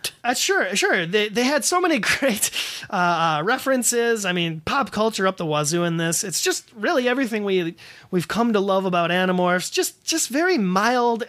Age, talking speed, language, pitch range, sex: 30-49, 195 wpm, English, 170-225 Hz, male